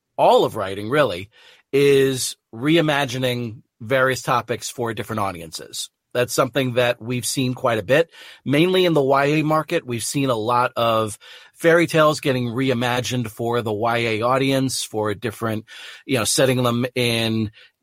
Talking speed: 150 wpm